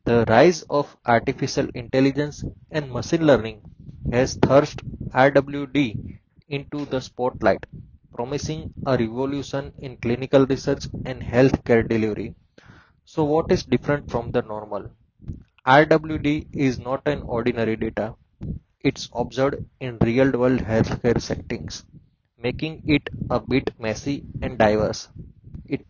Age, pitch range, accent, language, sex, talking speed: 20-39, 115-140 Hz, Indian, English, male, 115 wpm